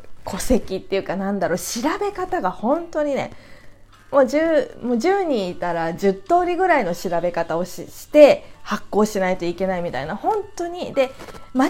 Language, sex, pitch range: Japanese, female, 180-280 Hz